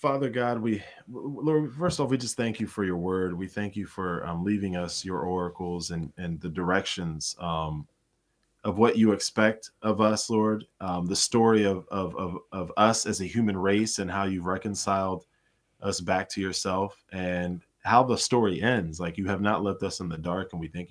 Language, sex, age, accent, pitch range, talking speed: English, male, 20-39, American, 90-110 Hz, 205 wpm